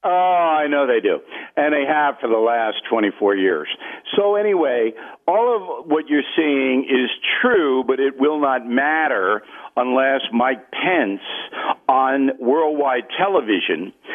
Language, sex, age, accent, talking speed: English, male, 60-79, American, 140 wpm